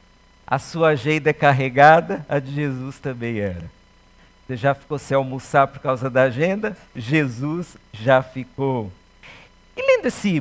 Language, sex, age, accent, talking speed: Portuguese, male, 50-69, Brazilian, 145 wpm